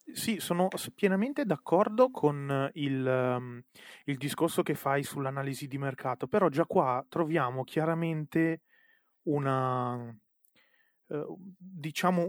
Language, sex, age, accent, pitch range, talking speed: Italian, male, 30-49, native, 130-160 Hz, 105 wpm